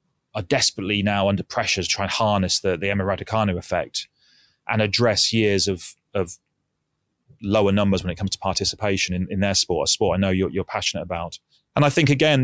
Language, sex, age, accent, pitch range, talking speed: English, male, 30-49, British, 100-120 Hz, 205 wpm